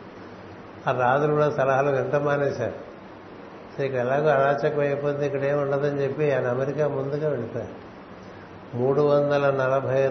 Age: 60-79